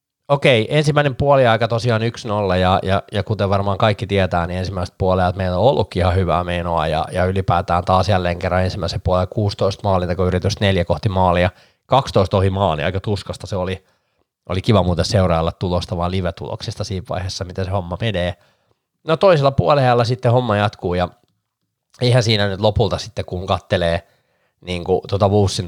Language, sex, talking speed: Finnish, male, 170 wpm